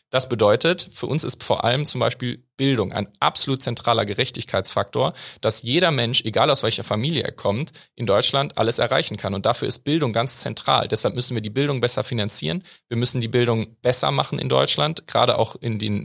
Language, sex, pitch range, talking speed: German, male, 110-130 Hz, 200 wpm